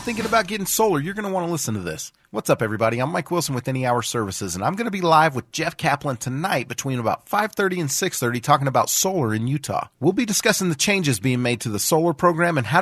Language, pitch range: English, 115-160 Hz